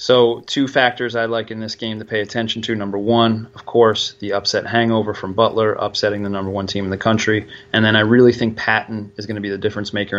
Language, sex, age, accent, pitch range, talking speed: English, male, 30-49, American, 105-120 Hz, 245 wpm